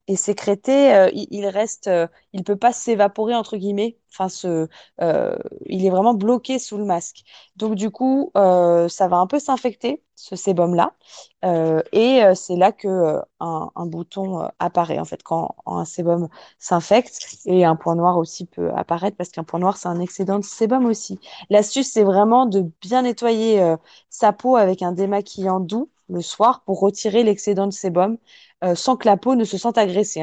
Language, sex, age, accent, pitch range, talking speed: French, female, 20-39, French, 180-225 Hz, 195 wpm